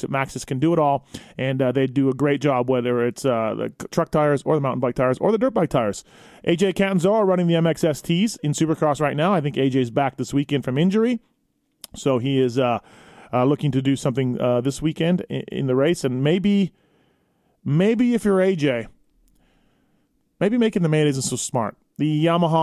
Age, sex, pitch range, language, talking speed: 30-49, male, 130-170 Hz, English, 205 wpm